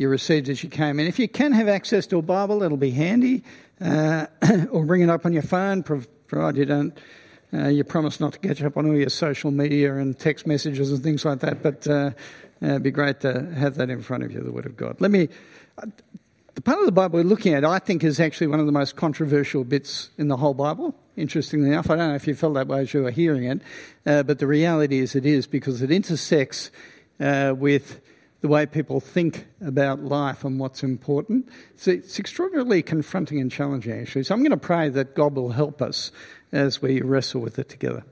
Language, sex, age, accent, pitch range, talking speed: English, male, 50-69, Australian, 140-165 Hz, 235 wpm